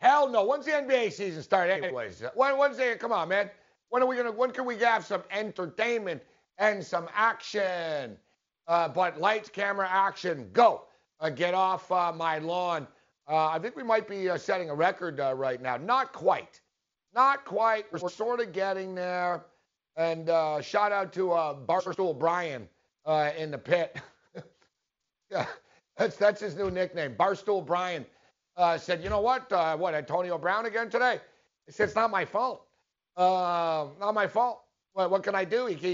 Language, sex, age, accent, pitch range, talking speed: English, male, 50-69, American, 170-215 Hz, 180 wpm